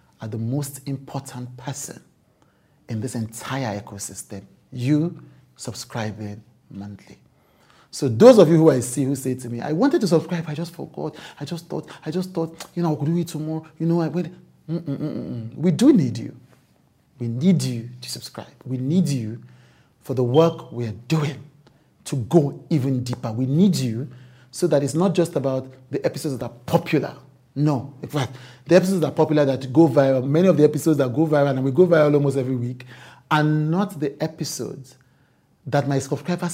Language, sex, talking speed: English, male, 185 wpm